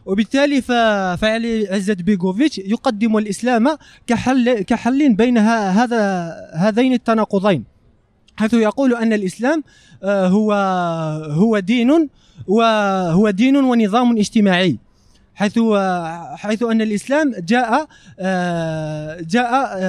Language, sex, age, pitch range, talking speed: Arabic, male, 20-39, 185-230 Hz, 90 wpm